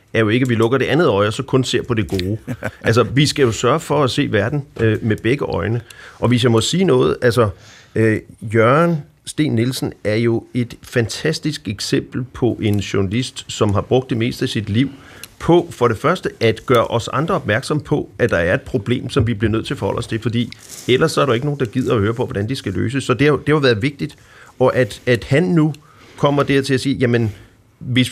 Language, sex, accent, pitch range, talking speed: Danish, male, native, 110-145 Hz, 240 wpm